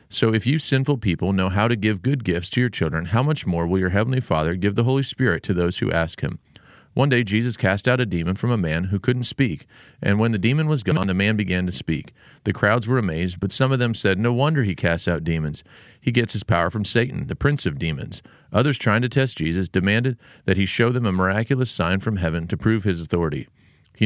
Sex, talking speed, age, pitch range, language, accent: male, 245 wpm, 40-59, 95-125 Hz, English, American